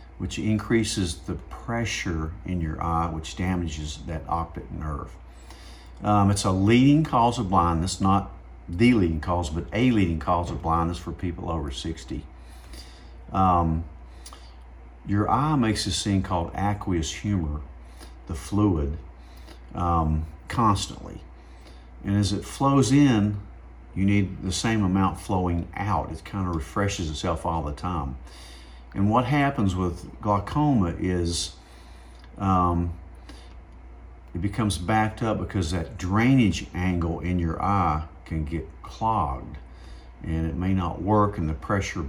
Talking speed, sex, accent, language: 135 wpm, male, American, English